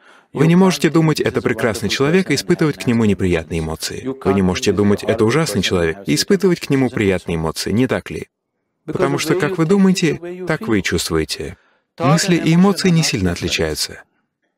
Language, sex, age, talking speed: Russian, male, 30-49, 180 wpm